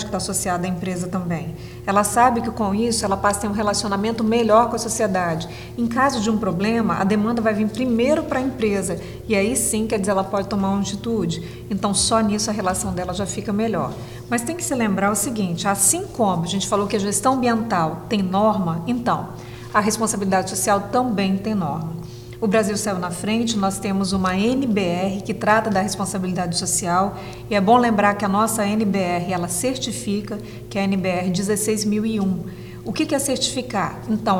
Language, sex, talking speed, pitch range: Portuguese, female, 195 wpm, 190-225 Hz